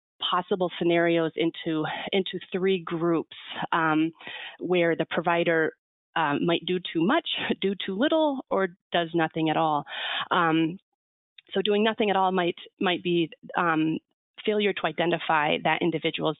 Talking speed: 140 wpm